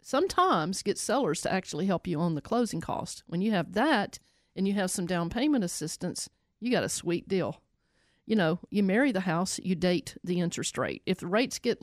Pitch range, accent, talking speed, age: 175-235 Hz, American, 215 wpm, 50-69